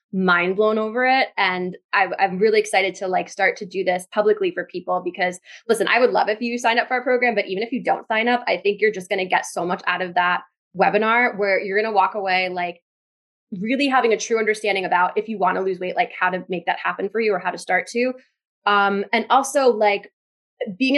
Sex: female